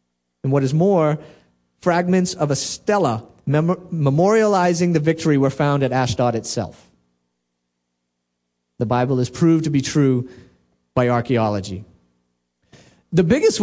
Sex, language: male, English